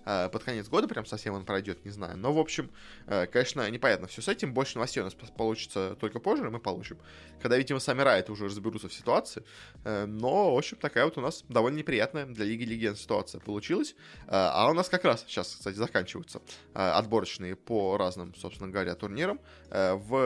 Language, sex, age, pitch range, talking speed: Russian, male, 20-39, 105-135 Hz, 190 wpm